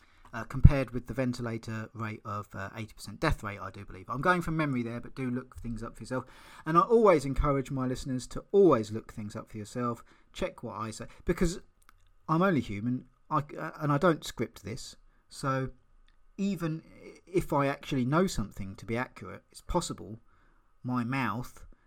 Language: English